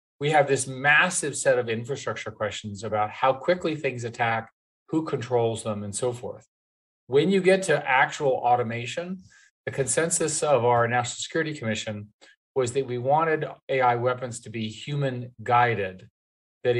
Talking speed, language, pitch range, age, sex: 155 wpm, English, 110-135 Hz, 40-59, male